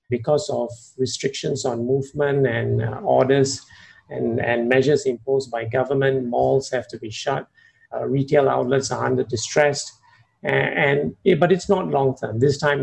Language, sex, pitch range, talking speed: English, male, 125-145 Hz, 165 wpm